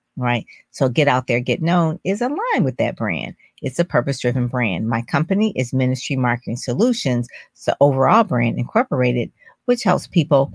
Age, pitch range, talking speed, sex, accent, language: 40-59, 125-170 Hz, 170 wpm, female, American, English